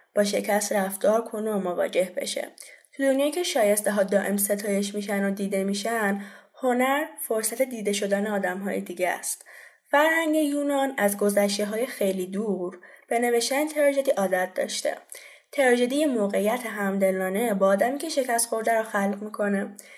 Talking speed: 140 wpm